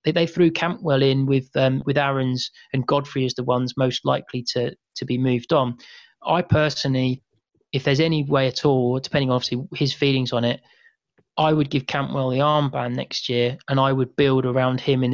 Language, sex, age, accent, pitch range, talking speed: English, male, 30-49, British, 130-145 Hz, 195 wpm